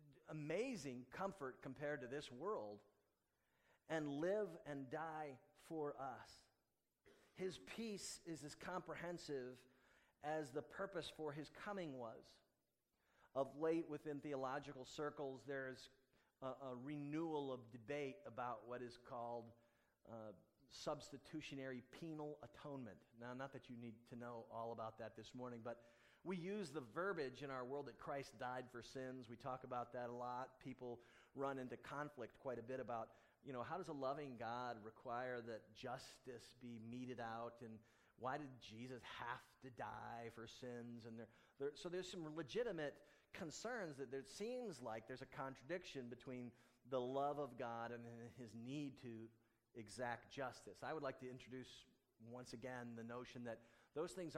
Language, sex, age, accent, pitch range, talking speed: English, male, 40-59, American, 120-145 Hz, 155 wpm